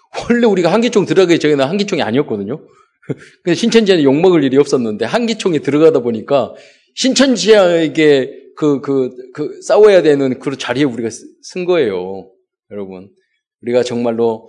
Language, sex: Korean, male